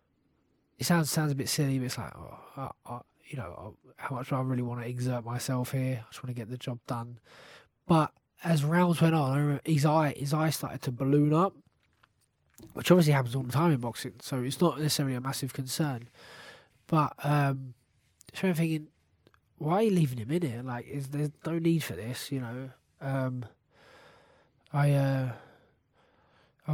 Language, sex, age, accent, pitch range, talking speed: English, male, 20-39, British, 130-155 Hz, 190 wpm